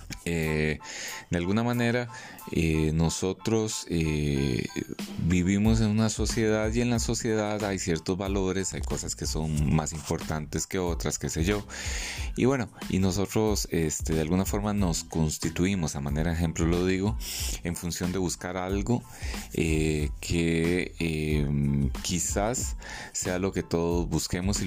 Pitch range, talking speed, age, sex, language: 75-95 Hz, 145 wpm, 30-49, male, Spanish